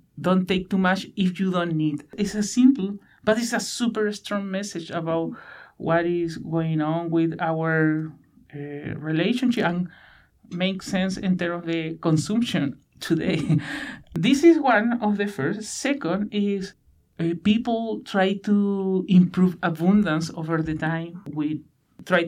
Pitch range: 165-210 Hz